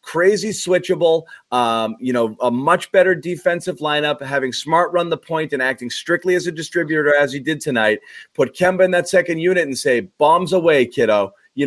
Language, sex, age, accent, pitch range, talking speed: English, male, 30-49, American, 130-180 Hz, 190 wpm